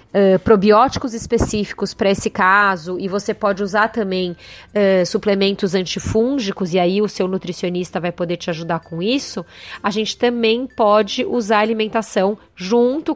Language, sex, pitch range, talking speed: Portuguese, female, 190-235 Hz, 145 wpm